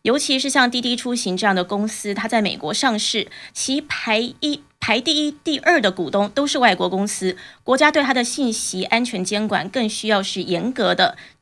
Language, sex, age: Chinese, female, 20-39